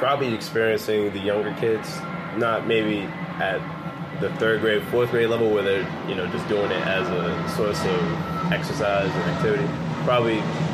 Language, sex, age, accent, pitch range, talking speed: English, male, 20-39, American, 85-105 Hz, 160 wpm